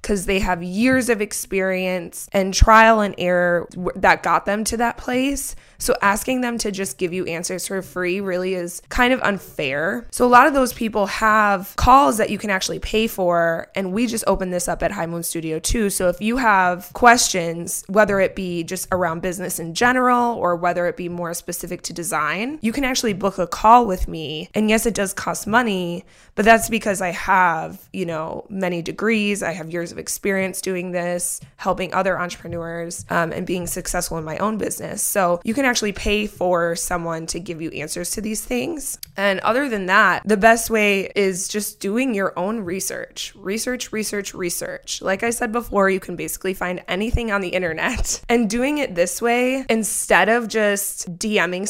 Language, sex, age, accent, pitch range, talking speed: English, female, 20-39, American, 180-225 Hz, 195 wpm